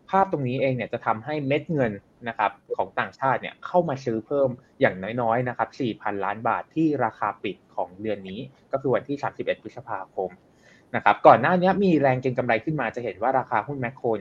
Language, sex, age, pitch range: Thai, male, 20-39, 115-150 Hz